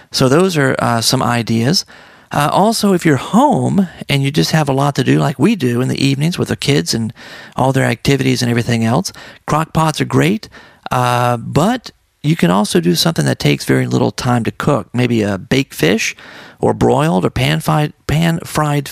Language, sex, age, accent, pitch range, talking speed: English, male, 40-59, American, 125-160 Hz, 195 wpm